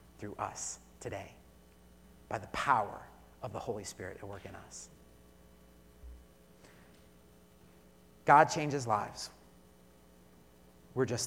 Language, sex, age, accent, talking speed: English, male, 30-49, American, 100 wpm